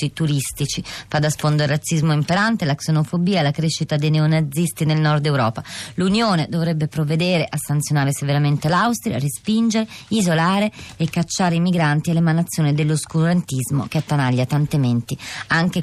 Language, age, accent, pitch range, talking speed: Italian, 30-49, native, 145-170 Hz, 145 wpm